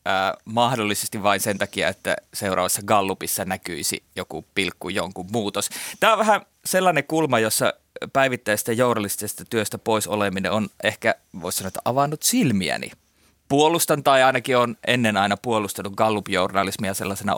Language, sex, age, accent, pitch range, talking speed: Finnish, male, 30-49, native, 105-145 Hz, 140 wpm